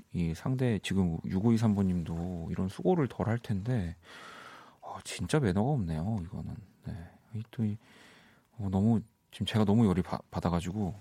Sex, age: male, 40-59